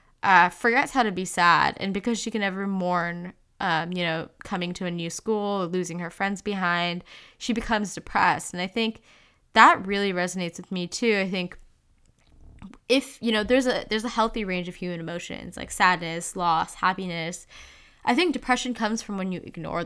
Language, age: English, 10-29